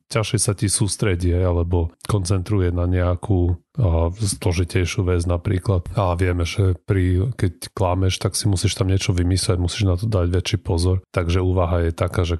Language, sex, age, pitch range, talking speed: Slovak, male, 30-49, 85-100 Hz, 170 wpm